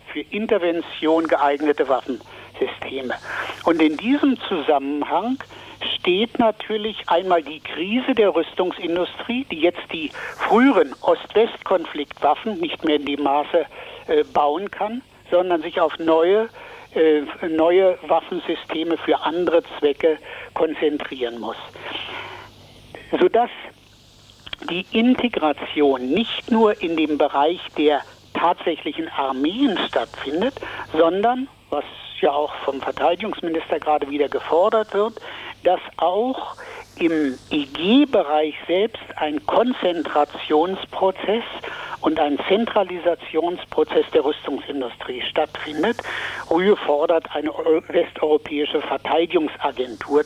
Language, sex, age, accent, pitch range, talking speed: German, male, 60-79, German, 155-245 Hz, 95 wpm